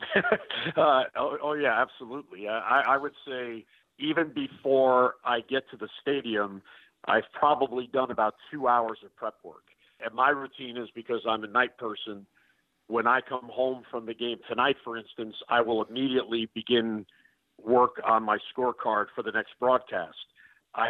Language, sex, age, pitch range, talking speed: English, male, 50-69, 110-130 Hz, 165 wpm